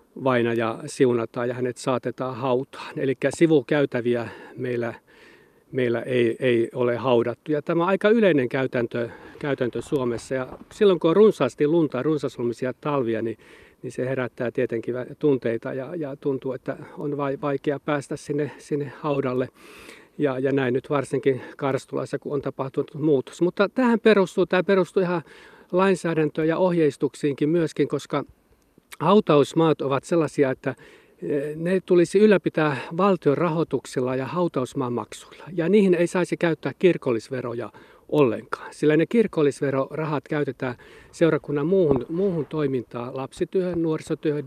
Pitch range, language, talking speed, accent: 130-170 Hz, Finnish, 125 wpm, native